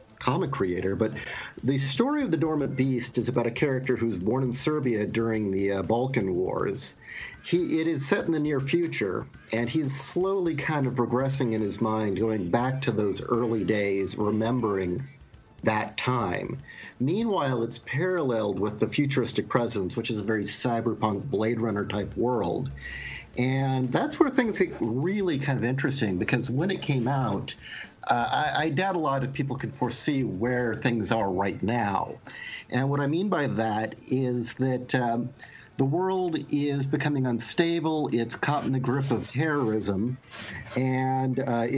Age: 50-69